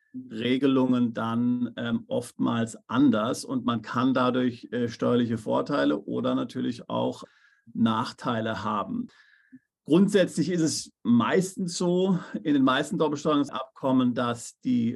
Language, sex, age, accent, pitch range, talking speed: German, male, 50-69, German, 120-175 Hz, 110 wpm